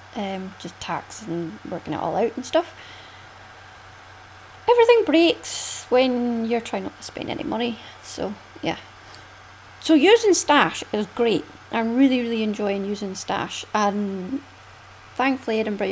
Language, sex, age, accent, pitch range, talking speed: English, female, 30-49, British, 200-280 Hz, 135 wpm